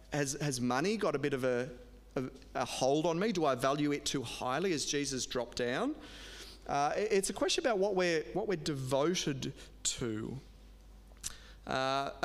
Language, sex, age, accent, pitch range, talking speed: English, male, 30-49, Australian, 135-175 Hz, 170 wpm